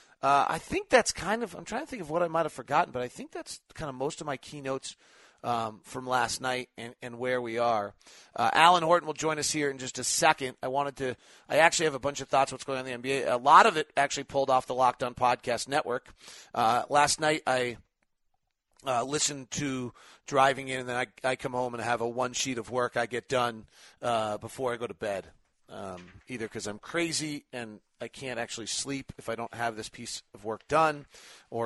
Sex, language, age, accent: male, English, 40-59, American